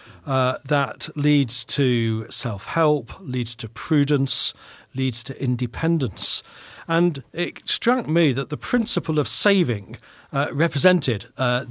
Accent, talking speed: British, 120 wpm